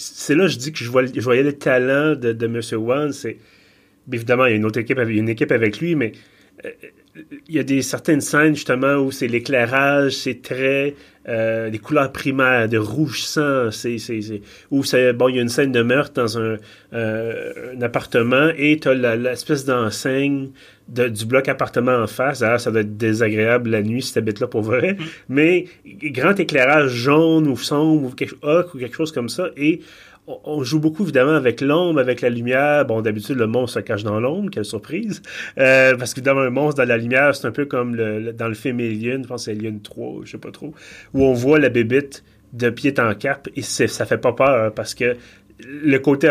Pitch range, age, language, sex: 115-140 Hz, 30-49, French, male